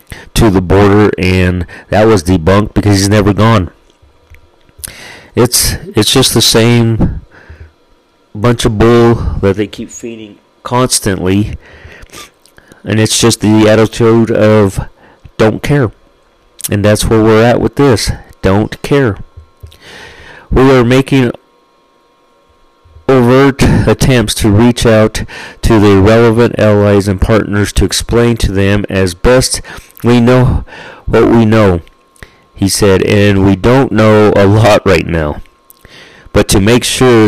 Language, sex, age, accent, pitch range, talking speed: English, male, 40-59, American, 100-115 Hz, 125 wpm